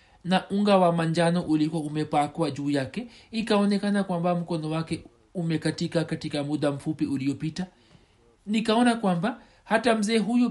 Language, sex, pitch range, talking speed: Swahili, male, 165-210 Hz, 125 wpm